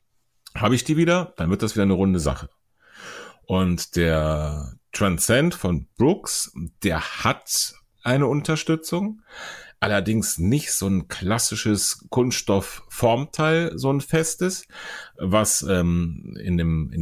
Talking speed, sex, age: 120 wpm, male, 40-59